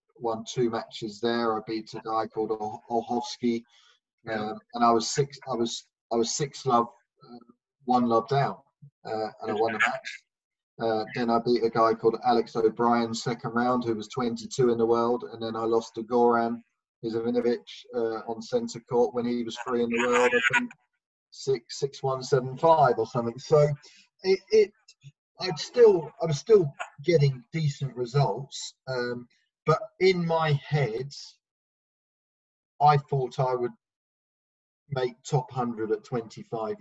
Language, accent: English, British